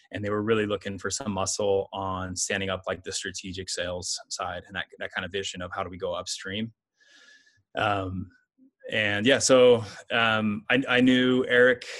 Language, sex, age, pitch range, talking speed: English, male, 20-39, 105-120 Hz, 185 wpm